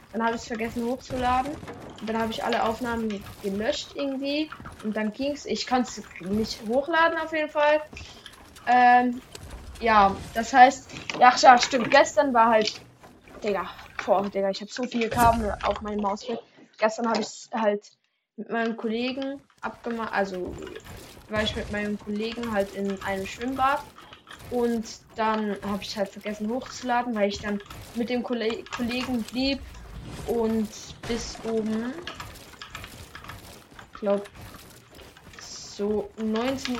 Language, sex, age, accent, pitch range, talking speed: German, female, 10-29, German, 215-265 Hz, 135 wpm